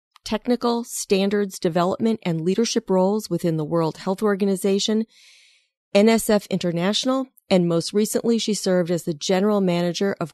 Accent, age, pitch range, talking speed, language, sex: American, 40-59, 165-210 Hz, 135 wpm, English, female